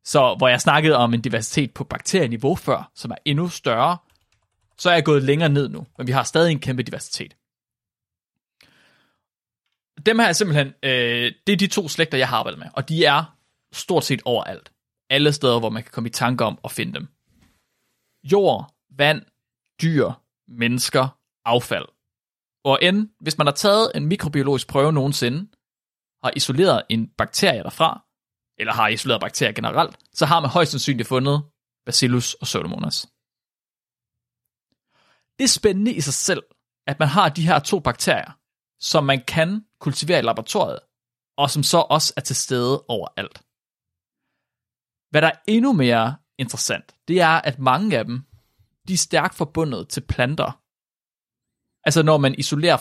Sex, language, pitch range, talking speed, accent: male, Danish, 125-165 Hz, 160 wpm, native